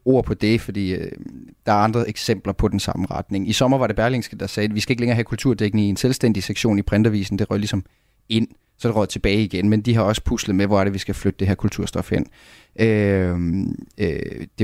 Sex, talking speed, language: male, 245 wpm, Danish